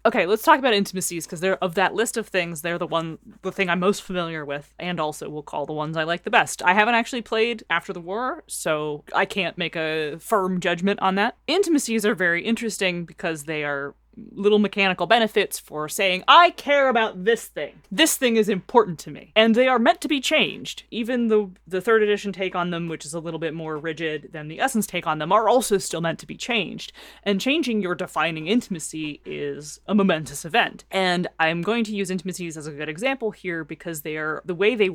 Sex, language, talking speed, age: female, English, 225 wpm, 30-49